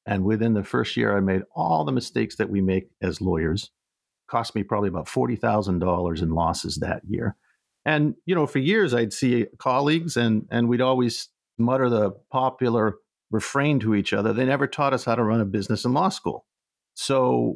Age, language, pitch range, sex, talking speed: 50-69, English, 95-120 Hz, male, 195 wpm